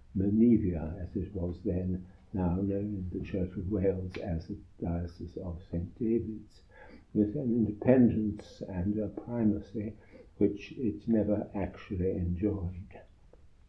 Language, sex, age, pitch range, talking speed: English, male, 60-79, 90-105 Hz, 125 wpm